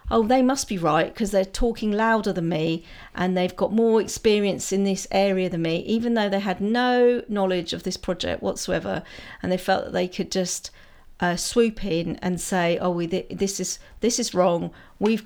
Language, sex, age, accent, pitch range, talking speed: English, female, 40-59, British, 180-220 Hz, 205 wpm